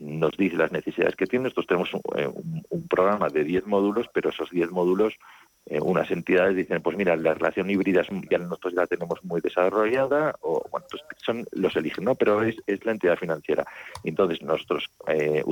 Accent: Spanish